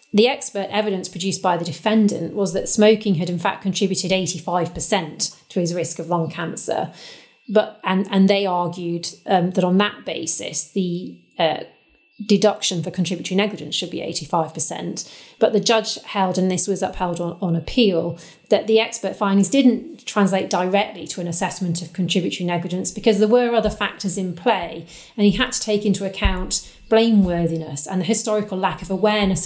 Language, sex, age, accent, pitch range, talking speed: English, female, 30-49, British, 170-205 Hz, 175 wpm